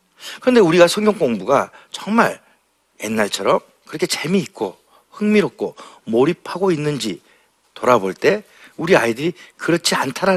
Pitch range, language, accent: 125-205 Hz, Korean, native